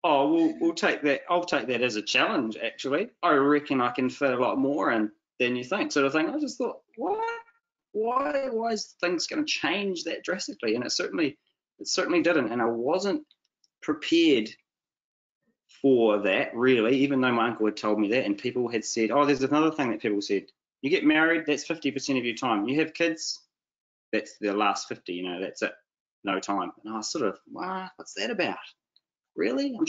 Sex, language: male, English